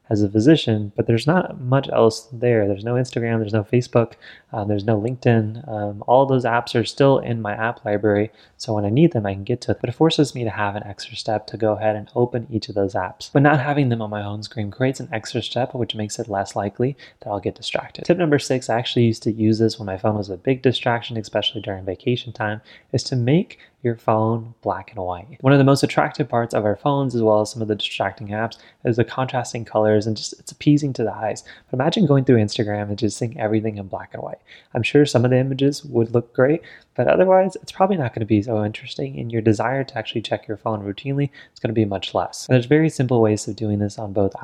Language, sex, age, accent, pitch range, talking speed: English, male, 20-39, American, 105-130 Hz, 260 wpm